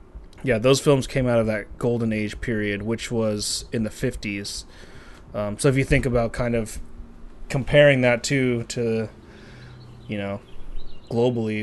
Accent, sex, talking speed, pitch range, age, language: American, male, 155 wpm, 105-135 Hz, 20-39, English